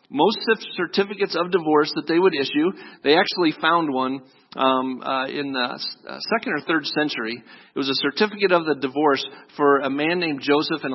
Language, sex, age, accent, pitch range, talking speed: English, male, 40-59, American, 145-195 Hz, 180 wpm